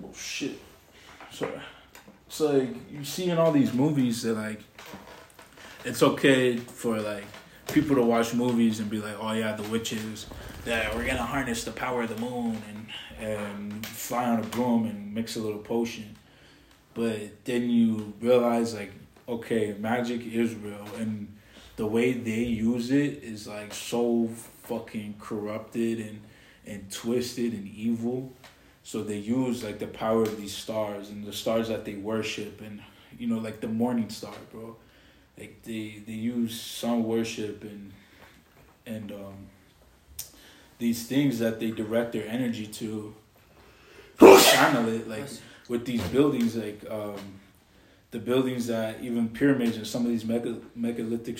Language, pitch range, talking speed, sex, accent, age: English, 105-120 Hz, 155 wpm, male, American, 20-39